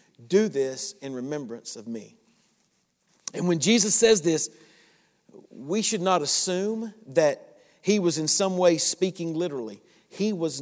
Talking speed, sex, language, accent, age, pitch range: 140 wpm, male, English, American, 50-69, 160-200 Hz